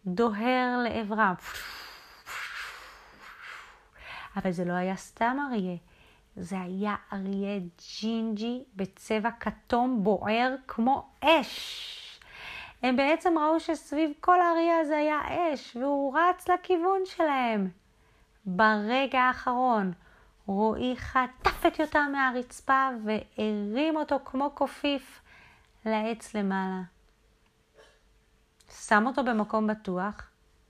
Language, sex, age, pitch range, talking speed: Hebrew, female, 30-49, 220-325 Hz, 90 wpm